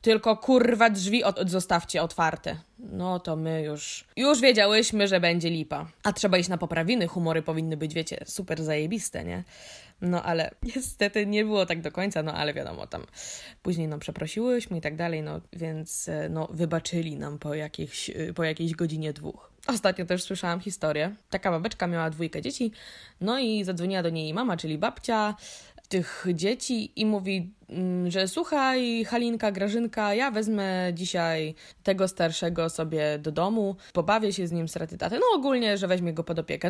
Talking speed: 165 wpm